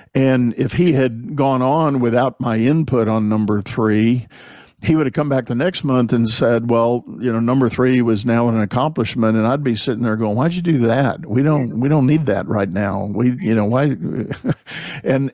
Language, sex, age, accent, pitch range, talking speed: English, male, 50-69, American, 110-130 Hz, 210 wpm